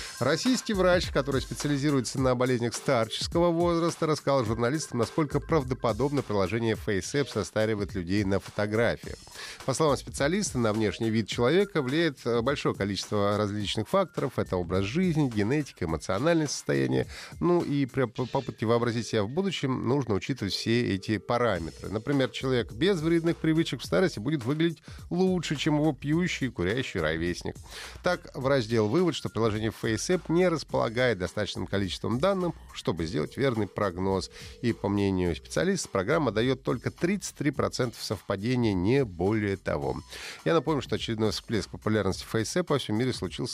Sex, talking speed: male, 140 wpm